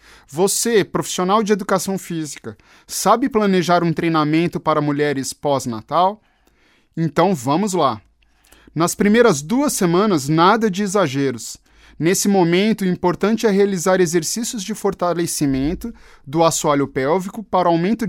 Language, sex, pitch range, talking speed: Portuguese, male, 155-195 Hz, 120 wpm